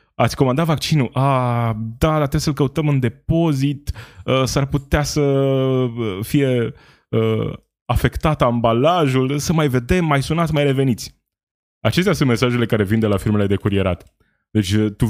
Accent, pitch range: native, 100-135 Hz